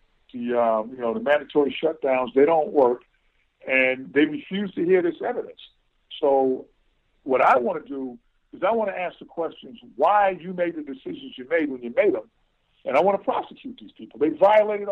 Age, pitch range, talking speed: 50-69, 135-200 Hz, 200 wpm